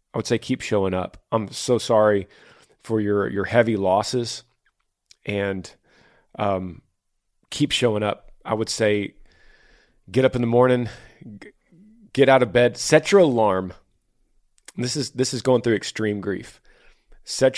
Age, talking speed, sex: 40-59, 150 wpm, male